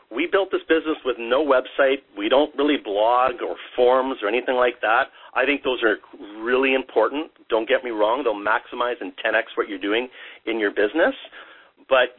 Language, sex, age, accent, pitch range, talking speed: English, male, 40-59, American, 110-180 Hz, 185 wpm